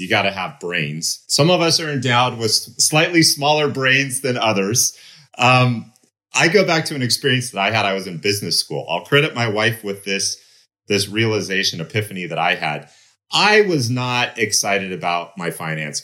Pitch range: 95-130 Hz